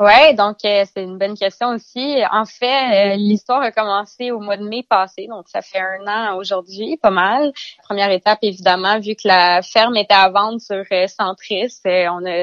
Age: 20-39